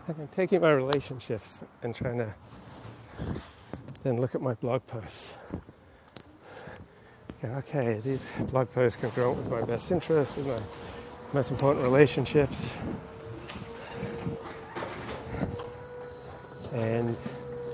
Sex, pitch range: male, 120-140 Hz